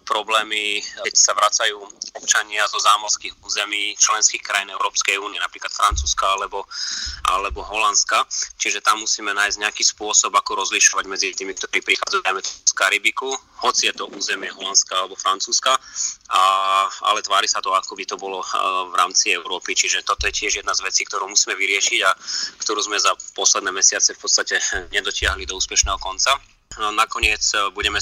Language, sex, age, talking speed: Slovak, male, 30-49, 160 wpm